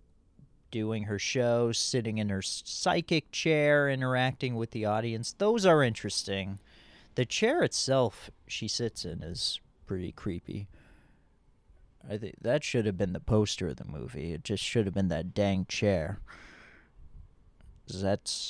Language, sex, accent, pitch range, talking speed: English, male, American, 100-160 Hz, 145 wpm